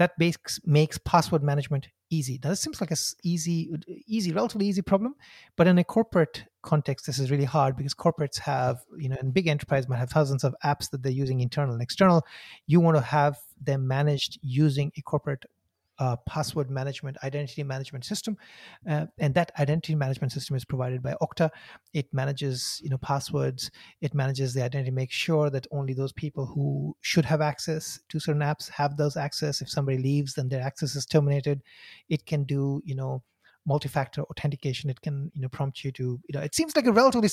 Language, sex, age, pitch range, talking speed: English, male, 30-49, 135-165 Hz, 195 wpm